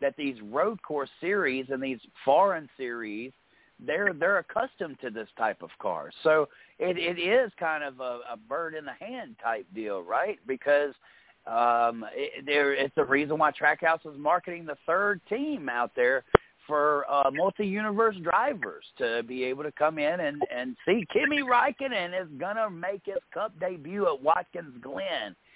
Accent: American